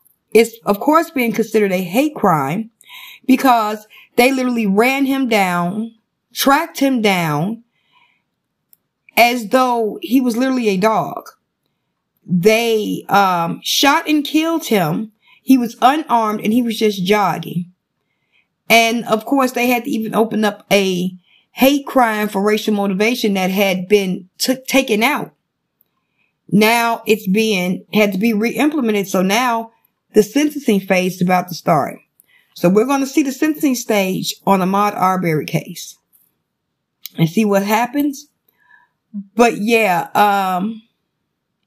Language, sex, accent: English, female, American